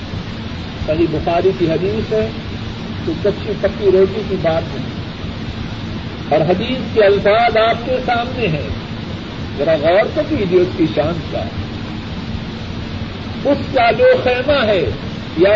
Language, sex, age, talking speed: Urdu, male, 50-69, 130 wpm